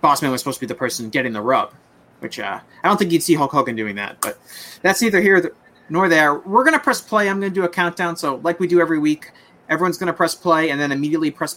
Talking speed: 275 wpm